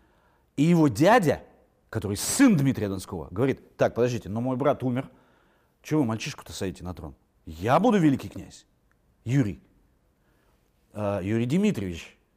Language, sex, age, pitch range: Russian, male, 40-59, 110-175 Hz